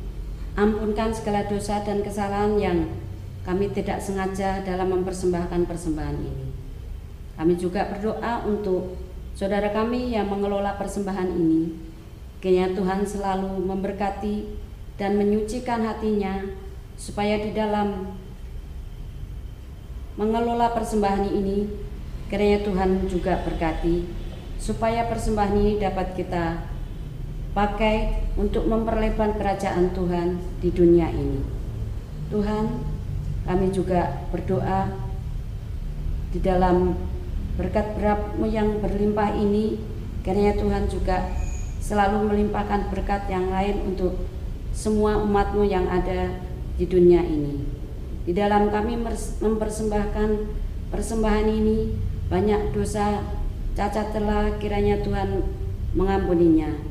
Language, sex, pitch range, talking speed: Indonesian, female, 140-205 Hz, 100 wpm